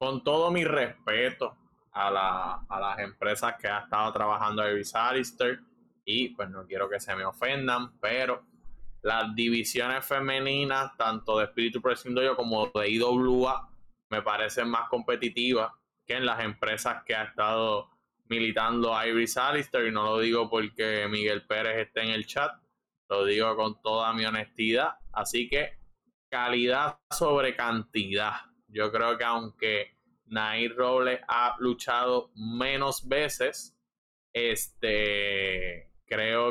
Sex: male